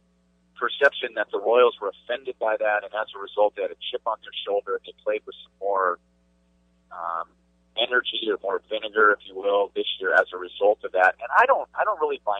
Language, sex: English, male